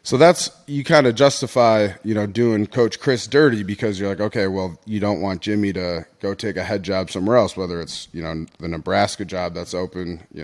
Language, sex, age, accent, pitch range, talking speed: English, male, 30-49, American, 90-115 Hz, 225 wpm